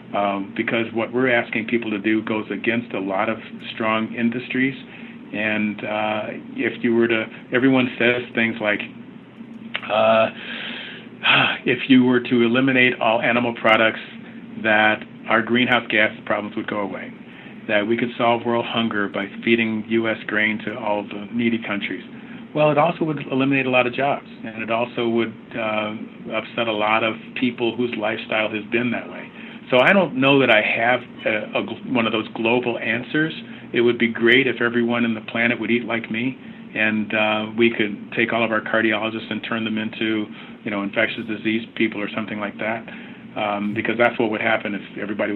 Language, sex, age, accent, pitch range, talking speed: English, male, 50-69, American, 110-125 Hz, 185 wpm